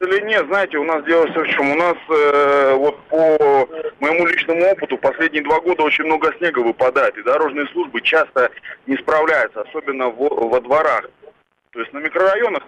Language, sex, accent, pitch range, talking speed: Russian, male, native, 115-160 Hz, 180 wpm